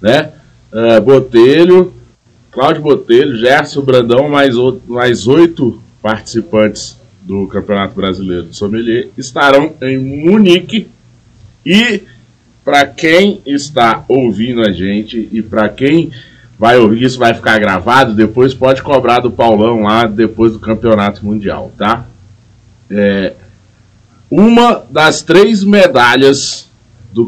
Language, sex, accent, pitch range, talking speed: Portuguese, male, Brazilian, 110-145 Hz, 110 wpm